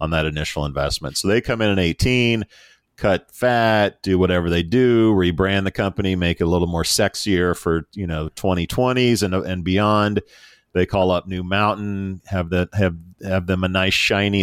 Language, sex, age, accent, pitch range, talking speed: English, male, 40-59, American, 85-105 Hz, 185 wpm